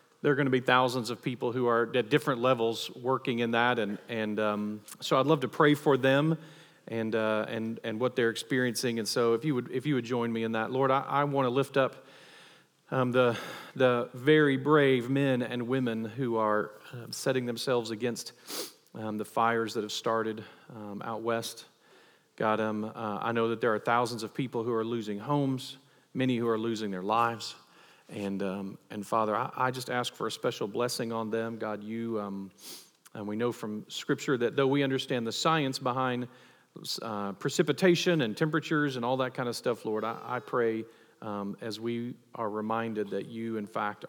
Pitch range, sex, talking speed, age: 105-130 Hz, male, 200 wpm, 40-59